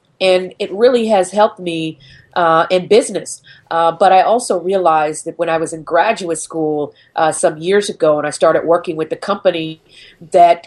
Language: English